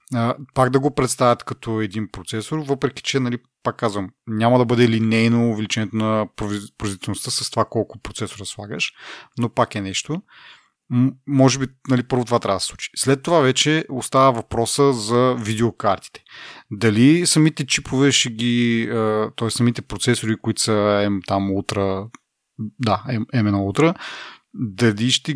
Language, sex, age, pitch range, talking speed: Bulgarian, male, 30-49, 110-135 Hz, 150 wpm